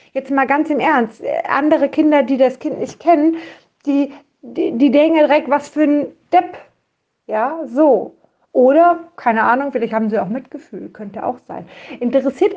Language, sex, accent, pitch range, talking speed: German, female, German, 215-290 Hz, 165 wpm